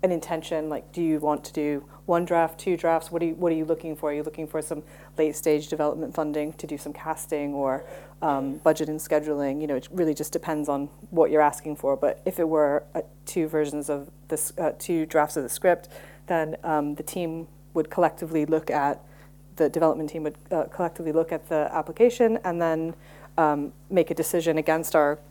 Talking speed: 210 wpm